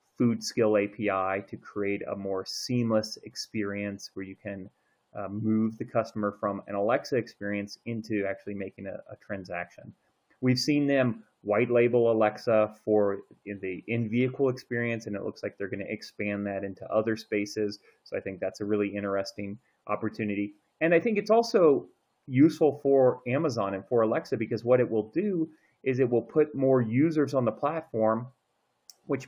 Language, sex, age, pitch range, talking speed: English, male, 30-49, 105-125 Hz, 170 wpm